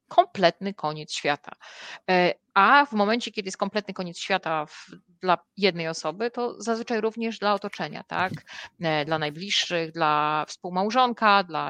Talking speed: 135 wpm